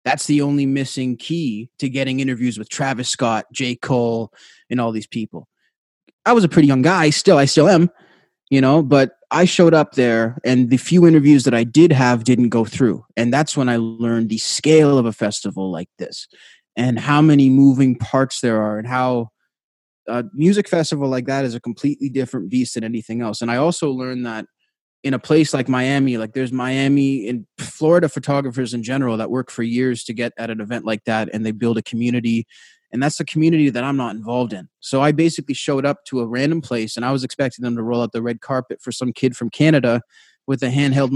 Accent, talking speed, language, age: American, 220 wpm, English, 20-39